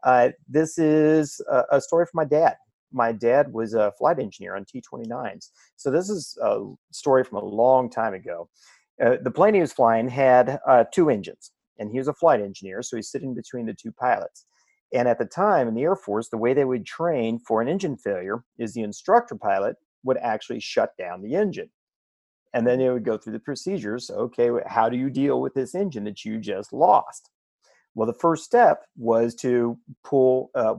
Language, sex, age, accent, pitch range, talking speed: English, male, 40-59, American, 110-145 Hz, 205 wpm